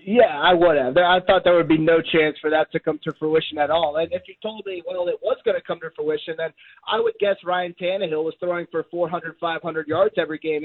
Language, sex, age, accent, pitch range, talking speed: English, male, 30-49, American, 165-190 Hz, 260 wpm